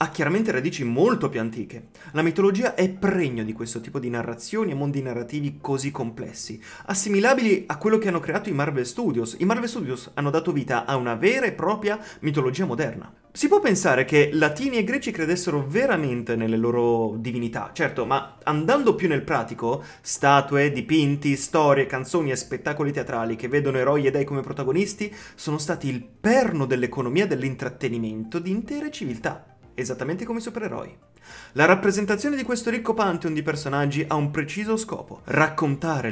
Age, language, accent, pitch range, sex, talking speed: 30-49, Italian, native, 125-190 Hz, male, 165 wpm